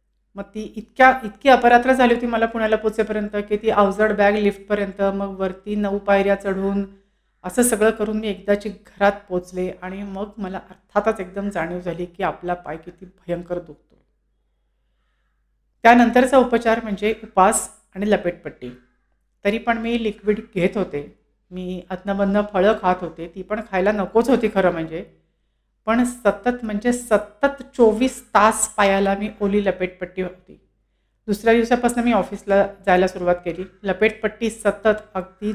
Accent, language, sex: native, Marathi, female